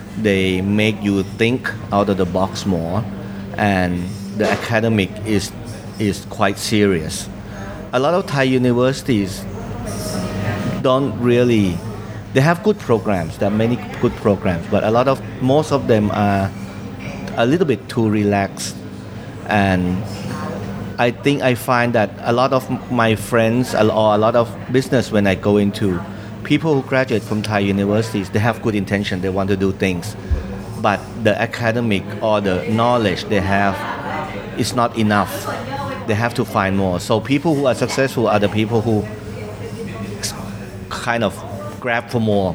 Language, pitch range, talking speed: English, 100-115 Hz, 155 wpm